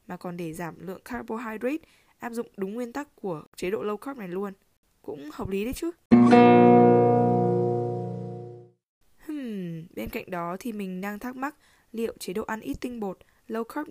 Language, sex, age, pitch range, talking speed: Vietnamese, female, 10-29, 180-230 Hz, 170 wpm